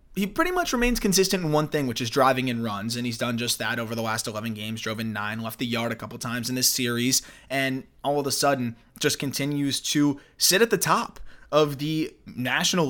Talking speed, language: 235 wpm, English